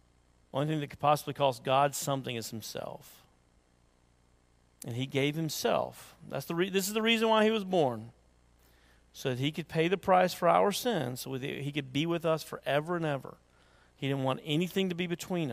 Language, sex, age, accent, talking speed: English, male, 40-59, American, 200 wpm